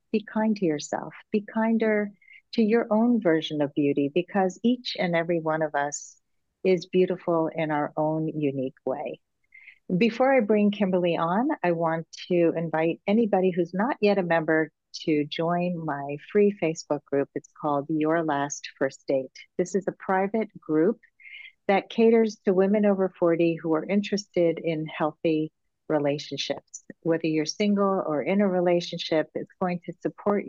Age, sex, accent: 50-69, female, American